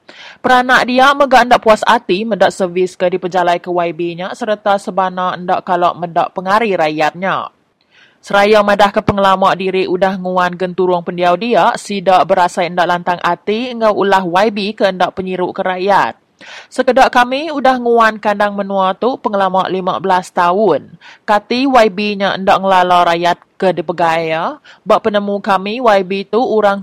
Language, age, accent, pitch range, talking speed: English, 20-39, Indonesian, 180-210 Hz, 150 wpm